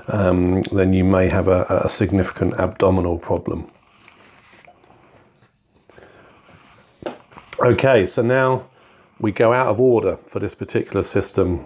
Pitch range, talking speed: 95-105 Hz, 115 wpm